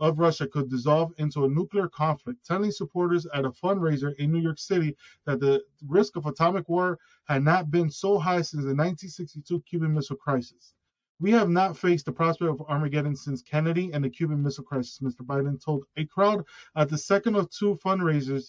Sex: male